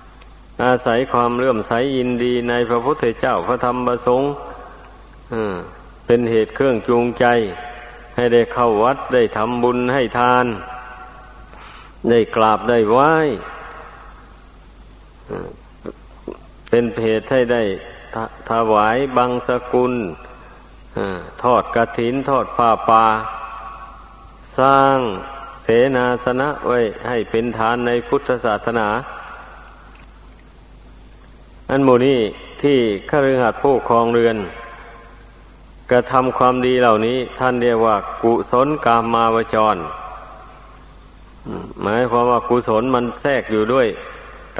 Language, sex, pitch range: Thai, male, 115-125 Hz